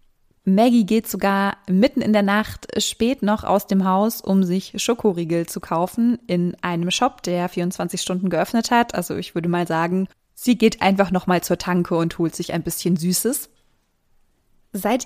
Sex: female